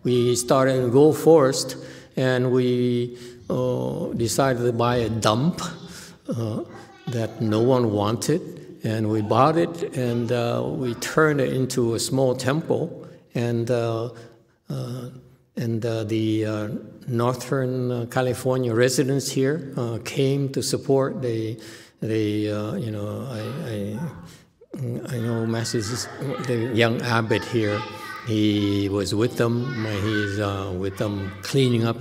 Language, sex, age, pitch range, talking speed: English, male, 60-79, 110-135 Hz, 135 wpm